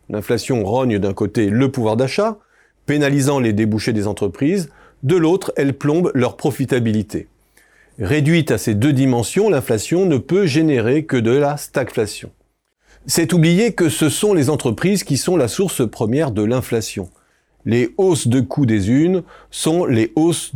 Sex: male